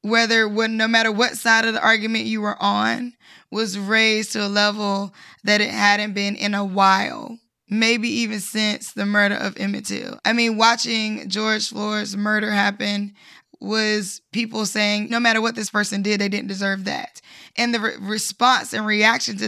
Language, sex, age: English, female, 20-39